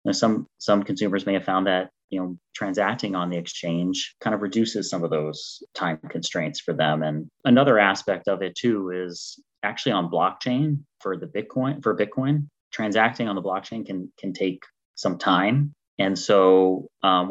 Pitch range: 85-100 Hz